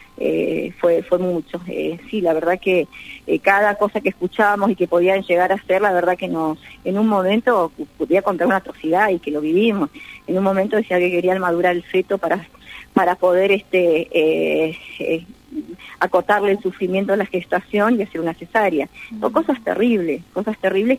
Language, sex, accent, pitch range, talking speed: Spanish, female, Argentinian, 175-205 Hz, 190 wpm